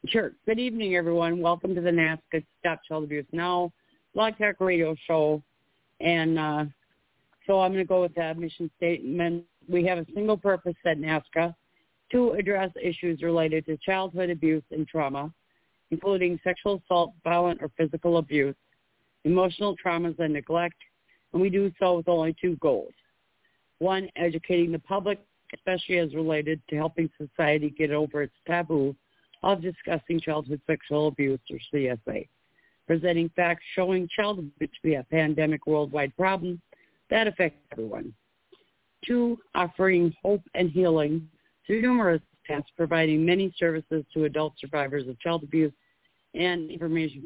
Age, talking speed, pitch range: 50-69, 145 wpm, 150-180 Hz